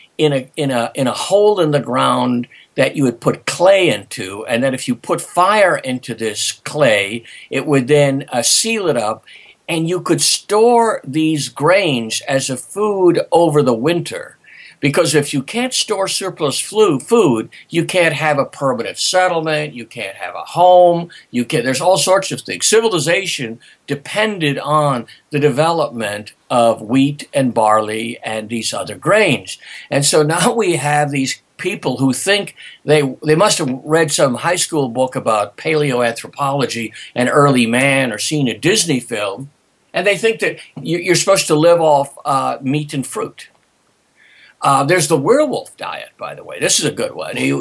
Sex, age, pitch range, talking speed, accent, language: male, 50-69, 125-170 Hz, 175 wpm, American, English